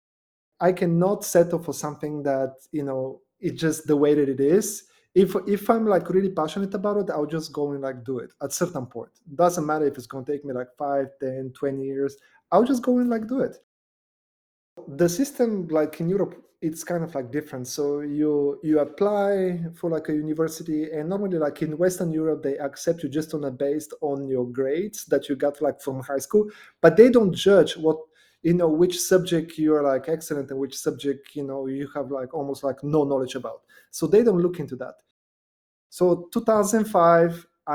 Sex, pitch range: male, 140-180 Hz